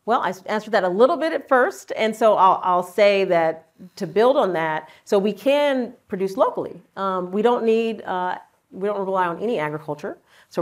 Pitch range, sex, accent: 165-195 Hz, female, American